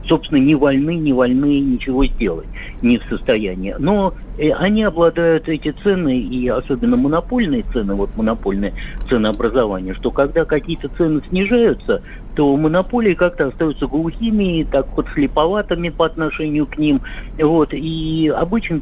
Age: 50-69